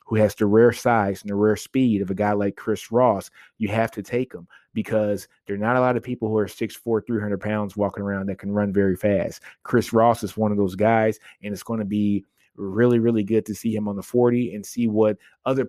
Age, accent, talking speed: 20-39, American, 260 wpm